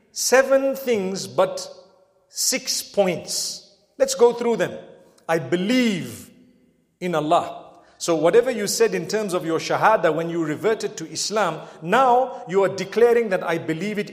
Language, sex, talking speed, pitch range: English, male, 150 wpm, 185-255 Hz